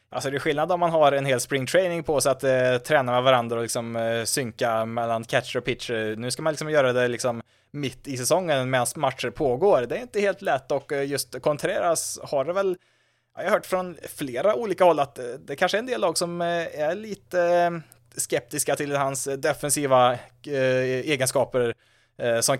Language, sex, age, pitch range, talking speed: Swedish, male, 20-39, 120-150 Hz, 190 wpm